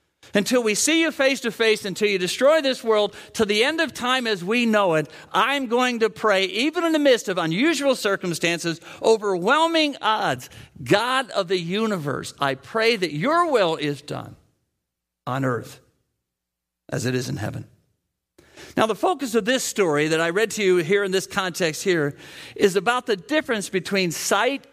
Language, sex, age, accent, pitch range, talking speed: English, male, 50-69, American, 160-240 Hz, 180 wpm